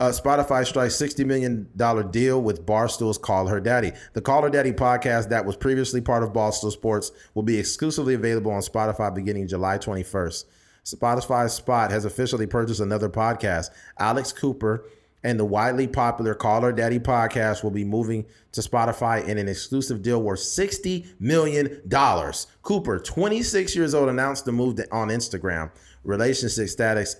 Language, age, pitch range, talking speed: English, 30-49, 105-120 Hz, 160 wpm